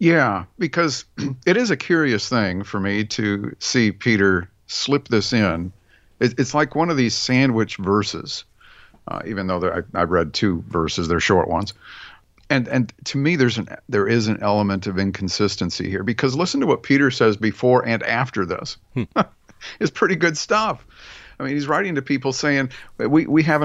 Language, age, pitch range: English, 50-69, 105-155 Hz